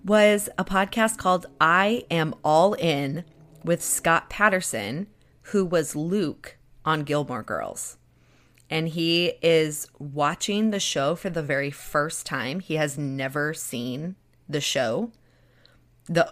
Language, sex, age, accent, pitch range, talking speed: English, female, 20-39, American, 135-165 Hz, 130 wpm